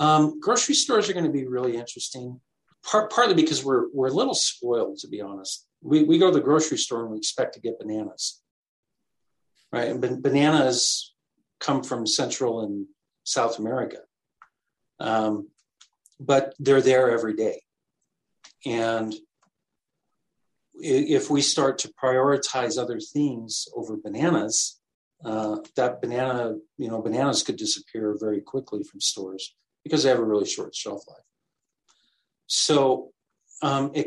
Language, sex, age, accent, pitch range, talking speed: English, male, 50-69, American, 110-150 Hz, 145 wpm